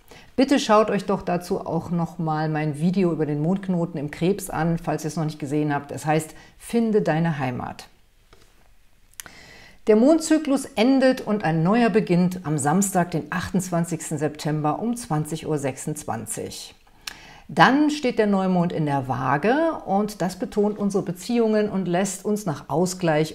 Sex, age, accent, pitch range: female, 50-69, German, 160-210 Hz